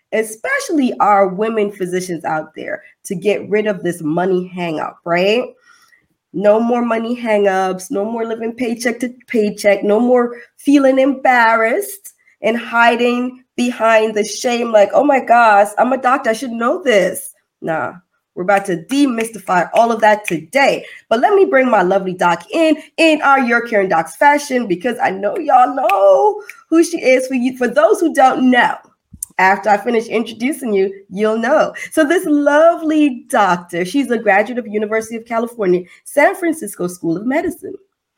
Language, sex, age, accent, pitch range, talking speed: English, female, 20-39, American, 205-290 Hz, 165 wpm